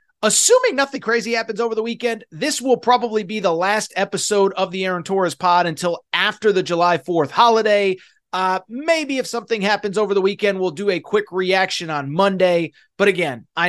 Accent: American